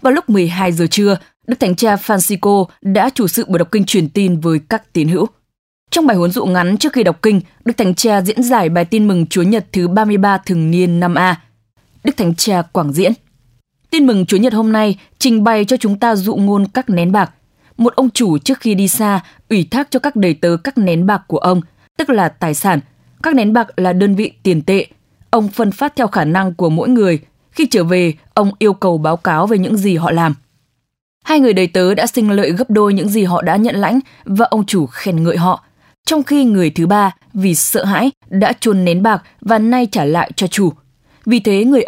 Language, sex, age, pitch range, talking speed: English, female, 20-39, 175-225 Hz, 230 wpm